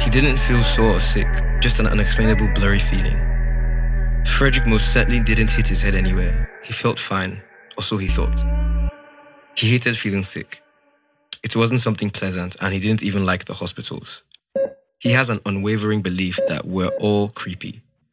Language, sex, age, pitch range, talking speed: English, male, 20-39, 95-115 Hz, 165 wpm